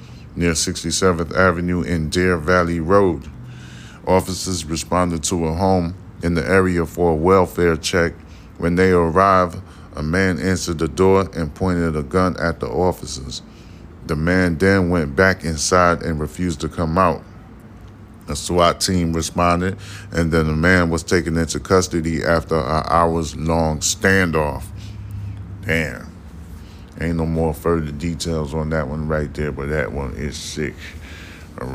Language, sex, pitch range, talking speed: English, male, 80-90 Hz, 150 wpm